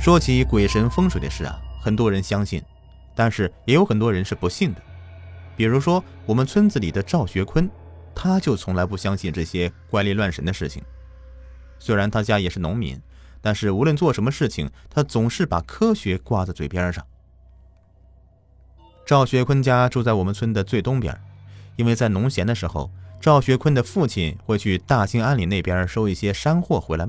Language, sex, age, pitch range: Chinese, male, 30-49, 90-125 Hz